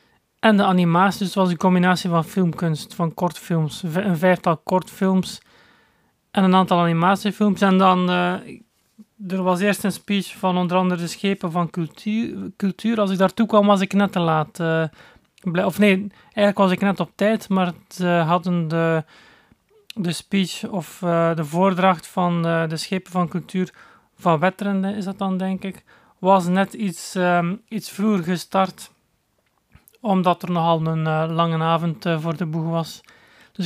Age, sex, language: 30-49, male, Dutch